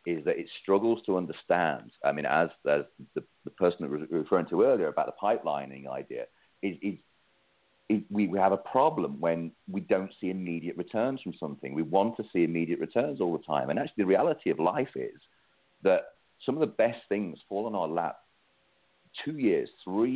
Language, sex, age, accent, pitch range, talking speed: English, male, 40-59, British, 85-130 Hz, 195 wpm